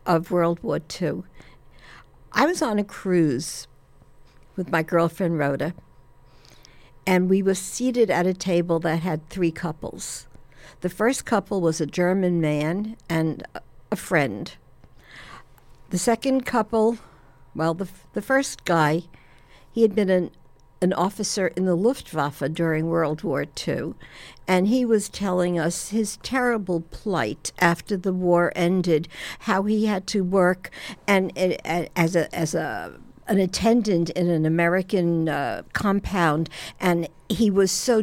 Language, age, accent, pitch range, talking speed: English, 60-79, American, 165-200 Hz, 140 wpm